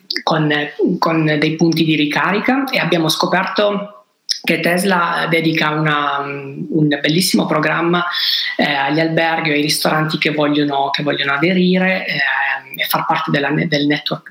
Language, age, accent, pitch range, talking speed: Italian, 30-49, native, 150-180 Hz, 145 wpm